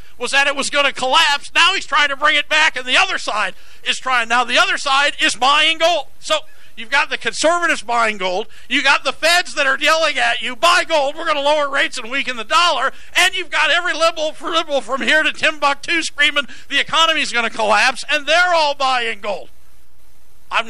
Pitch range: 205-290 Hz